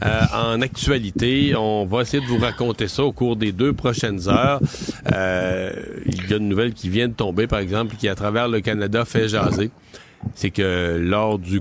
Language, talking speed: French, 195 wpm